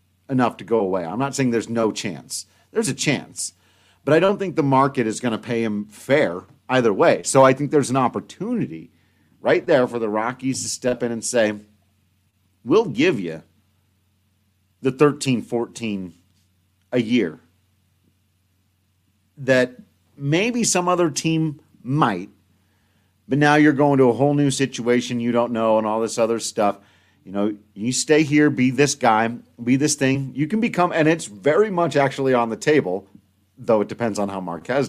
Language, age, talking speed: English, 50-69, 175 wpm